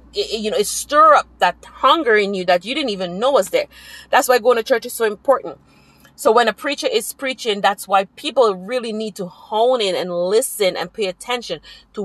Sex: female